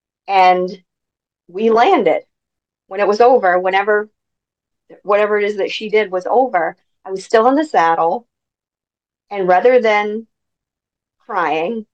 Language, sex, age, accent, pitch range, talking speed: English, female, 40-59, American, 180-255 Hz, 130 wpm